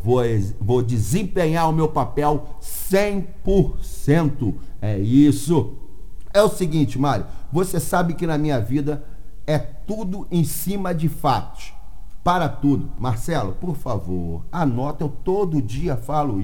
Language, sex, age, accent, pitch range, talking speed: Portuguese, male, 50-69, Brazilian, 125-165 Hz, 125 wpm